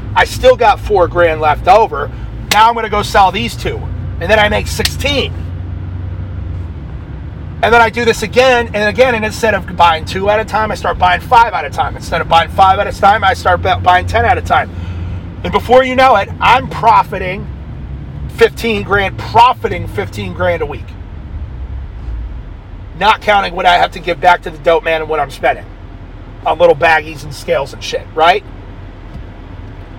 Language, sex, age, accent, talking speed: English, male, 30-49, American, 190 wpm